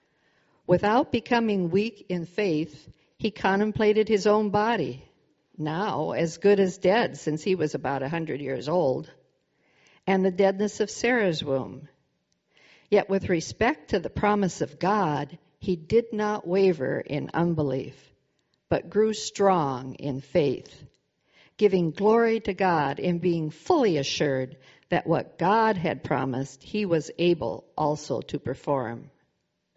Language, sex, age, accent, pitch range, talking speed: English, female, 50-69, American, 150-205 Hz, 135 wpm